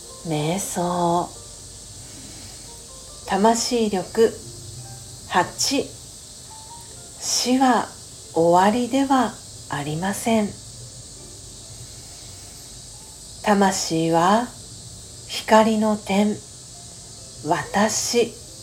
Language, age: Japanese, 40-59